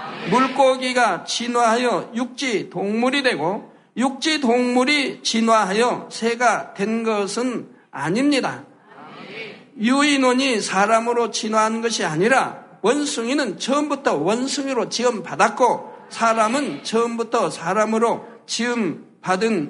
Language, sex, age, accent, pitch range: Korean, male, 60-79, native, 210-245 Hz